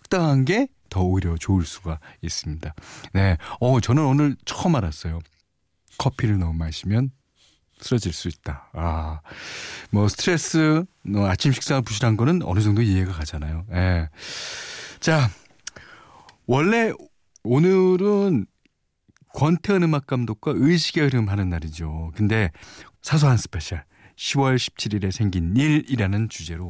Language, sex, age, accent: Korean, male, 40-59, native